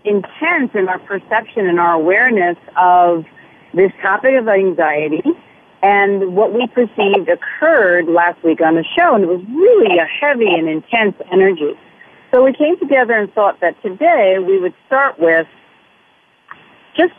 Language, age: English, 50-69